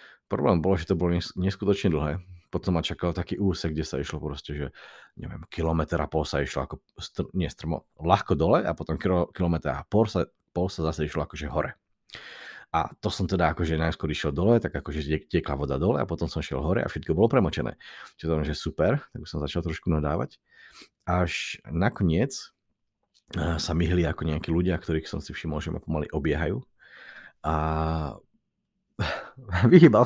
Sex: male